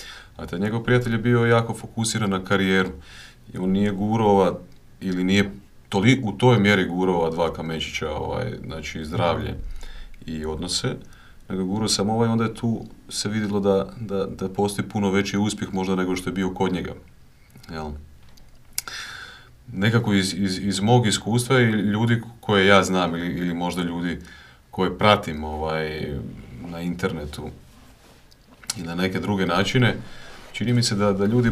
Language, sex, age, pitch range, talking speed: Croatian, male, 40-59, 90-110 Hz, 160 wpm